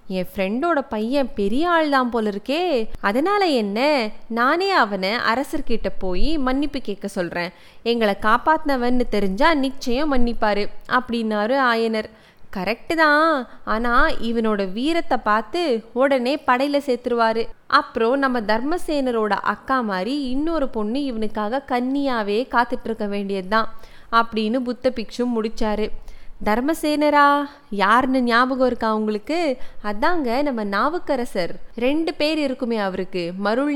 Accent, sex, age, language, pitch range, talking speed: native, female, 20-39, Tamil, 215-275 Hz, 110 wpm